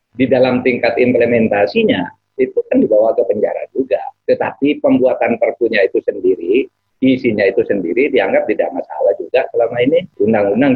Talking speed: 140 wpm